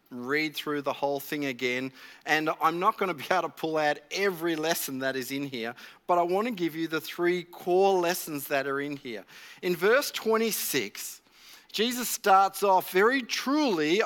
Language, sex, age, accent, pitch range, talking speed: English, male, 40-59, Australian, 160-220 Hz, 190 wpm